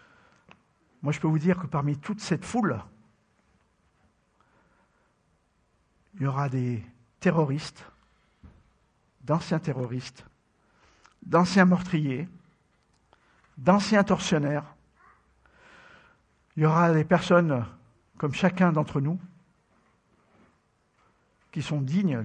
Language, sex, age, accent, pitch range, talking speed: English, male, 50-69, French, 140-180 Hz, 90 wpm